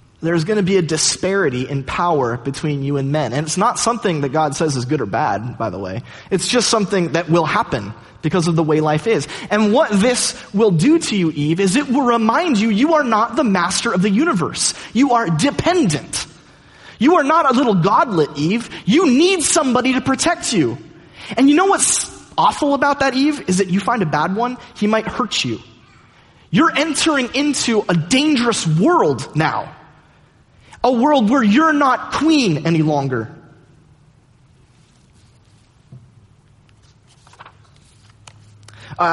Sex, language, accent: male, English, American